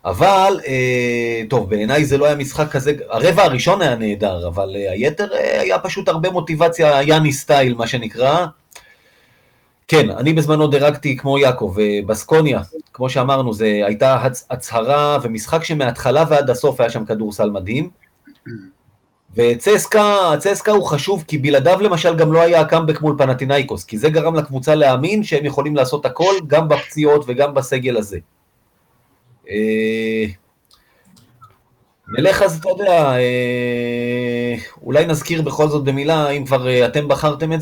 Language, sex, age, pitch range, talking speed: Hebrew, male, 30-49, 120-160 Hz, 135 wpm